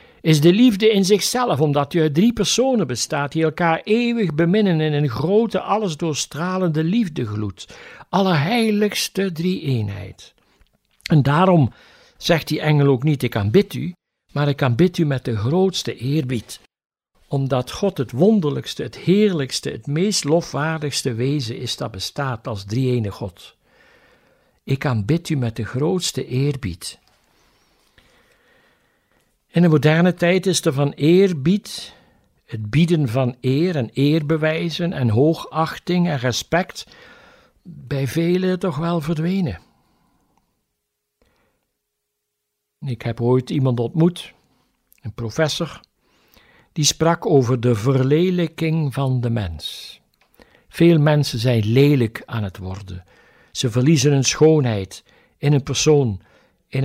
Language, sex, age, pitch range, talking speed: Dutch, male, 60-79, 125-170 Hz, 125 wpm